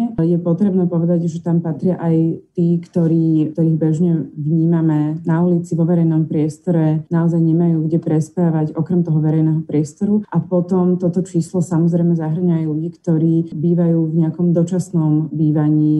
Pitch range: 150-165 Hz